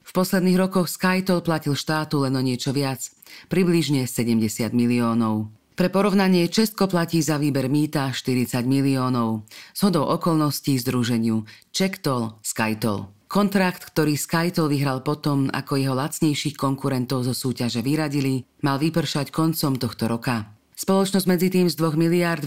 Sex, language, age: female, Slovak, 40-59